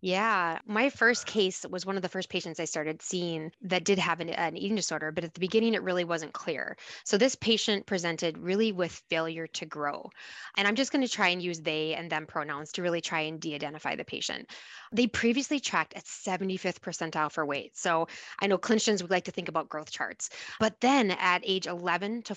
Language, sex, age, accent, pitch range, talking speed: English, female, 10-29, American, 160-210 Hz, 215 wpm